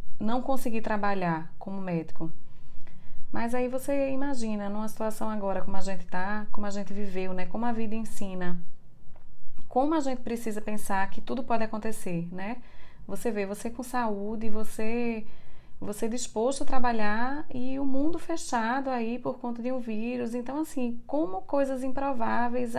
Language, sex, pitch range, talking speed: Portuguese, female, 195-240 Hz, 160 wpm